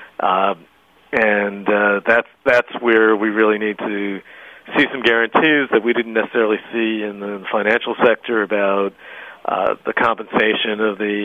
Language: English